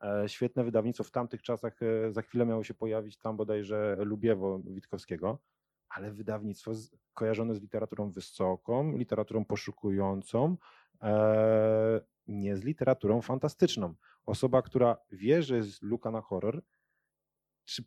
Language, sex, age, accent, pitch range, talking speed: Polish, male, 30-49, native, 105-120 Hz, 120 wpm